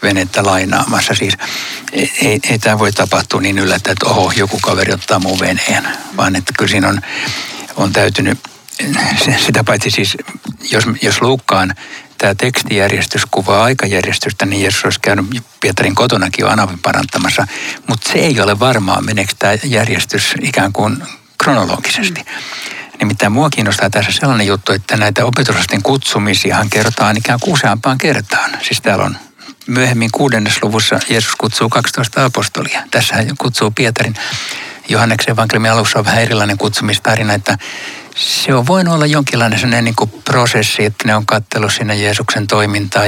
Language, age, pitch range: Finnish, 60-79, 100-125 Hz